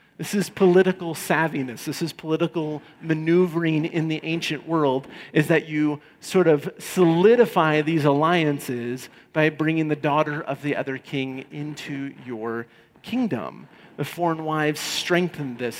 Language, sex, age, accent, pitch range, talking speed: English, male, 40-59, American, 145-185 Hz, 135 wpm